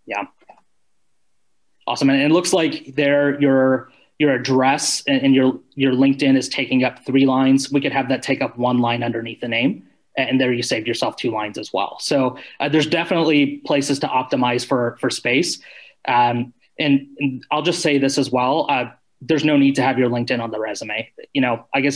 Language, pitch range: English, 130-150 Hz